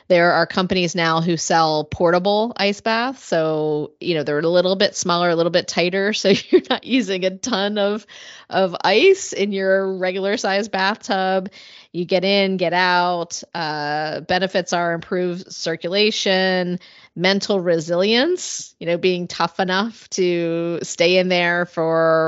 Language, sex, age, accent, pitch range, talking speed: English, female, 30-49, American, 170-195 Hz, 155 wpm